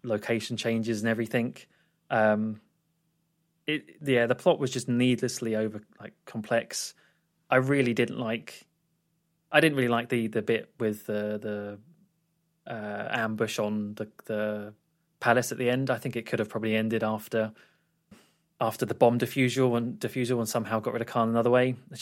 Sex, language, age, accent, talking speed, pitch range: male, English, 20-39, British, 165 wpm, 115-160 Hz